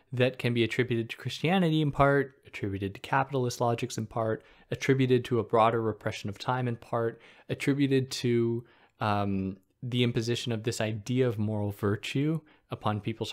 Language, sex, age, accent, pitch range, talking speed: English, male, 20-39, American, 110-140 Hz, 160 wpm